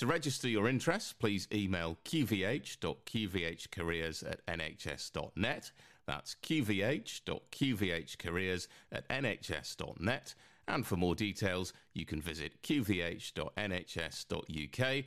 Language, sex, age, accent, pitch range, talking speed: English, male, 40-59, British, 85-115 Hz, 85 wpm